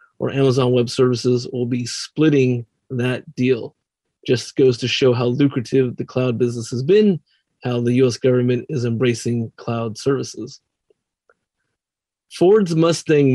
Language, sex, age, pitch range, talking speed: English, male, 30-49, 125-150 Hz, 135 wpm